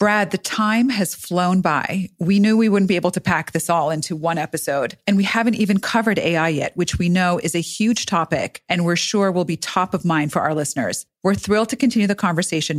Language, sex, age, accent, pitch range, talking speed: English, female, 40-59, American, 165-215 Hz, 235 wpm